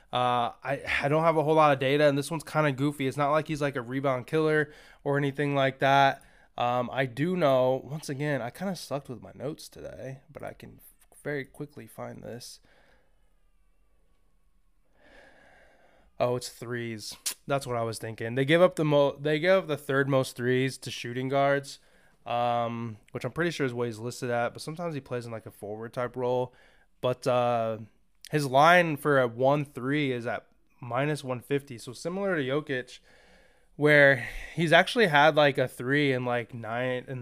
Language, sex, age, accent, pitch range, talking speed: English, male, 20-39, American, 125-145 Hz, 185 wpm